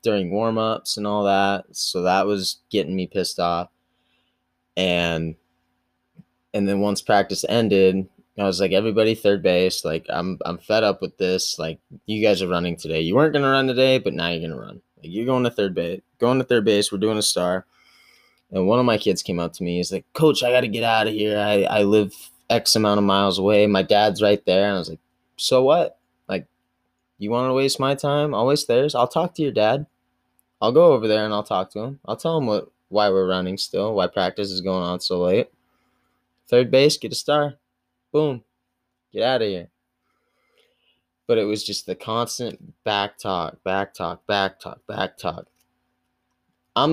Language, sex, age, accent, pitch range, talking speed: English, male, 20-39, American, 90-115 Hz, 205 wpm